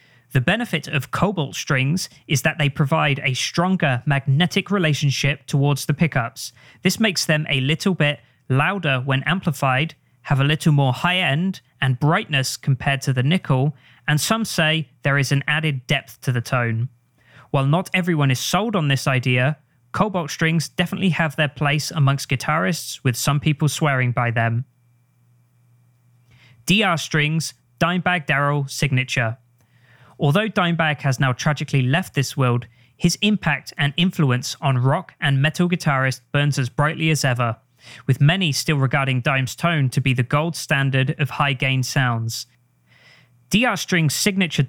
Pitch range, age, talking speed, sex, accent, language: 130-160 Hz, 20-39, 155 wpm, male, British, English